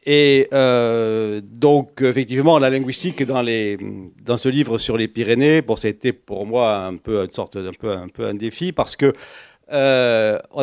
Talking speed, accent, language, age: 180 wpm, French, French, 50-69